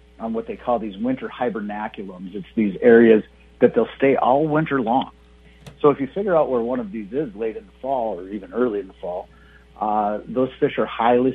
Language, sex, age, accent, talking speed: English, male, 50-69, American, 215 wpm